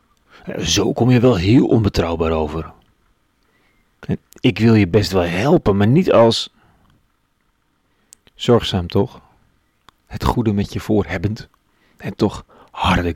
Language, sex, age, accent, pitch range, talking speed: Dutch, male, 40-59, Dutch, 95-115 Hz, 120 wpm